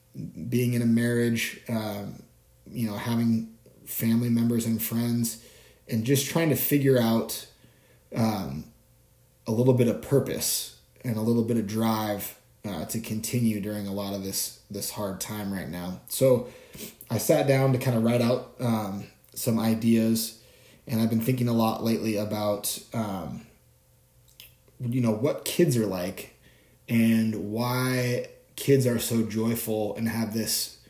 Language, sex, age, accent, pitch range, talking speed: English, male, 20-39, American, 110-125 Hz, 155 wpm